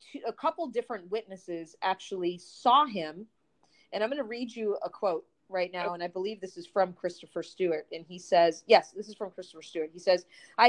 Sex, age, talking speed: female, 30-49, 210 wpm